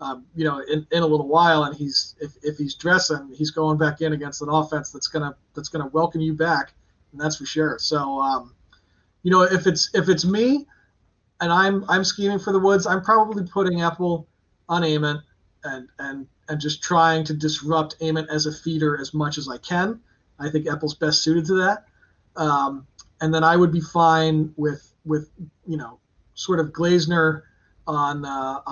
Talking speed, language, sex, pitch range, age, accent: 195 wpm, English, male, 150-170 Hz, 30-49, American